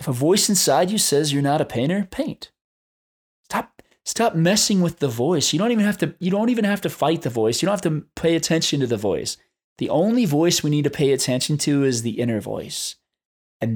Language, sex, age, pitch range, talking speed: English, male, 20-39, 125-175 Hz, 230 wpm